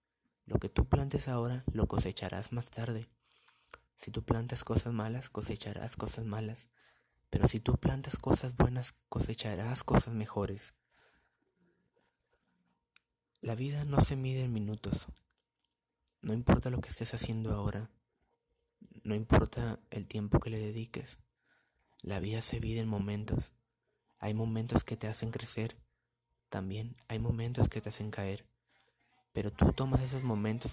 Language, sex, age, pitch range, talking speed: Spanish, male, 20-39, 105-120 Hz, 140 wpm